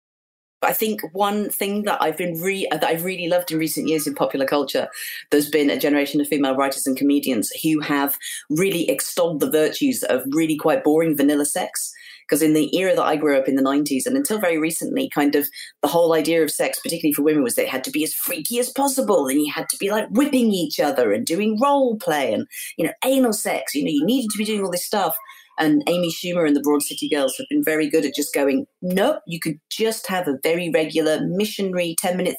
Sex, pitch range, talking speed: female, 155-225 Hz, 235 wpm